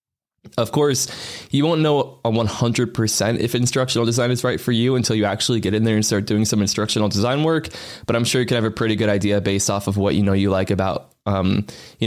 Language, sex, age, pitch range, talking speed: English, male, 20-39, 100-125 Hz, 235 wpm